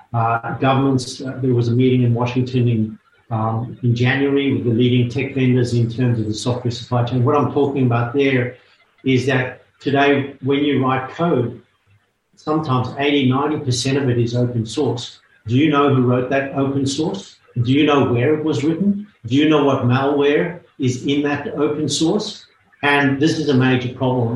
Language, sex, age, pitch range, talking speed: English, male, 50-69, 125-140 Hz, 185 wpm